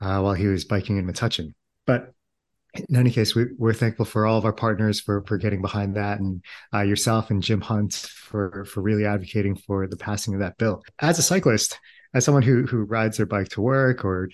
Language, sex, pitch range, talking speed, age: English, male, 100-125 Hz, 220 wpm, 30-49